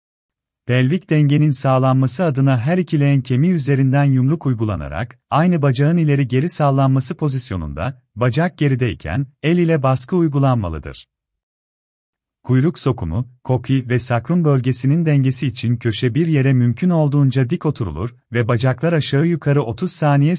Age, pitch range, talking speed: 40-59, 110-145 Hz, 130 wpm